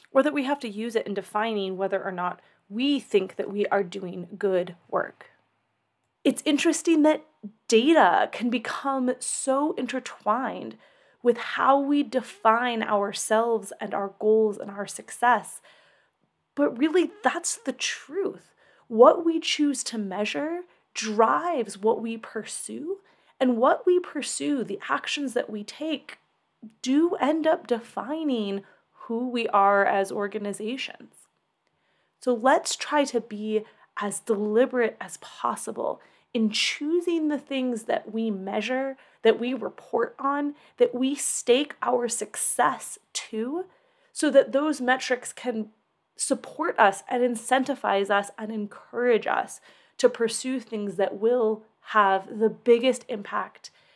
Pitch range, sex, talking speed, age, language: 215-280 Hz, female, 130 wpm, 30-49, English